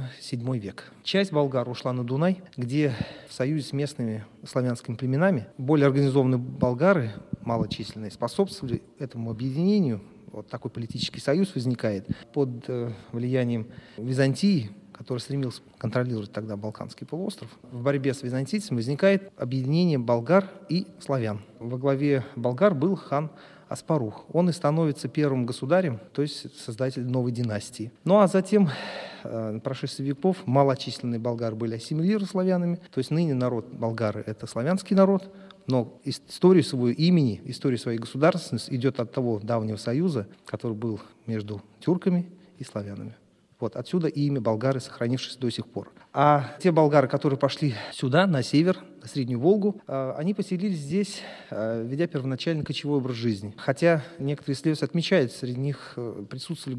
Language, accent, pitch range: Russian, native, 120-160 Hz